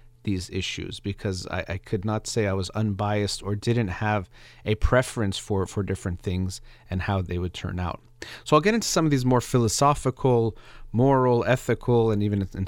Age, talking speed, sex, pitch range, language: 30-49, 190 wpm, male, 100-125 Hz, English